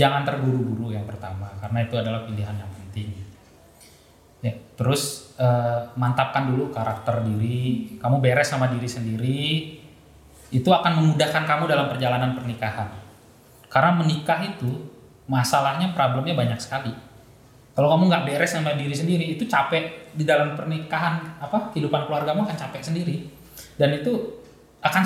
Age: 20-39